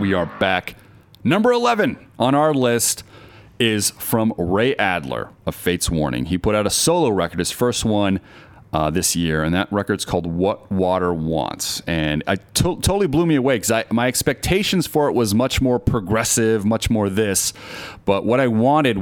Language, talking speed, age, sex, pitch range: English, 180 wpm, 30-49, male, 90-115 Hz